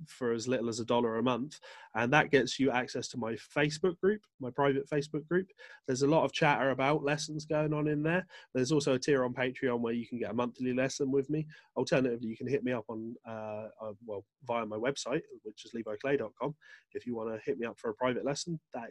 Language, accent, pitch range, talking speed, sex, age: English, British, 120-150 Hz, 240 wpm, male, 20-39